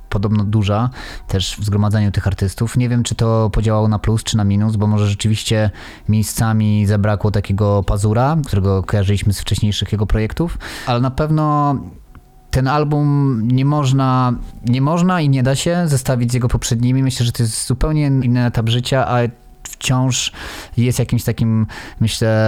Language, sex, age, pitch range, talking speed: Polish, male, 20-39, 100-120 Hz, 165 wpm